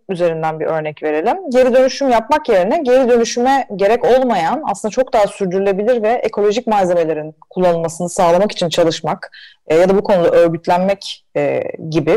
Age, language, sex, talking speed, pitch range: 30-49, Turkish, female, 155 wpm, 180-240 Hz